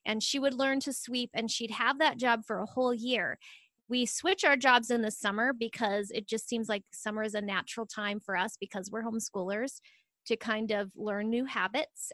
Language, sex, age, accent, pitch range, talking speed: English, female, 20-39, American, 205-245 Hz, 215 wpm